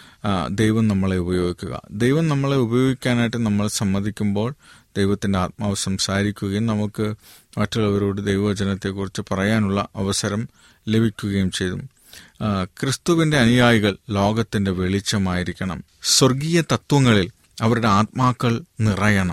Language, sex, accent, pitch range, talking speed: Malayalam, male, native, 100-125 Hz, 85 wpm